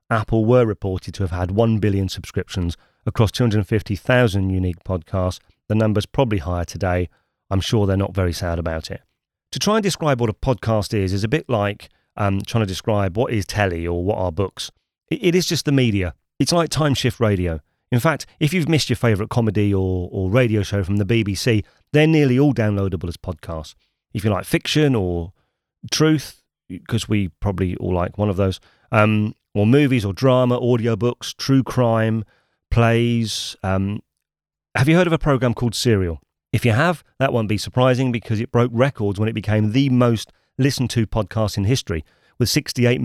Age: 30-49